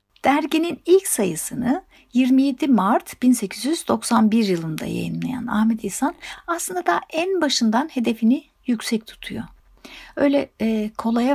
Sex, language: female, Turkish